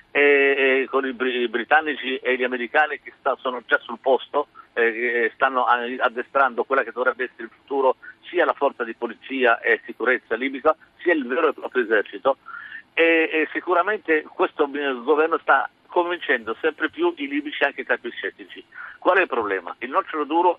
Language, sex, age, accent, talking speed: Italian, male, 50-69, native, 185 wpm